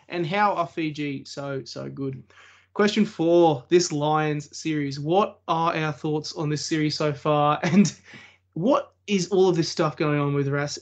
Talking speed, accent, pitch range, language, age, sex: 180 wpm, Australian, 140-170 Hz, English, 20-39, male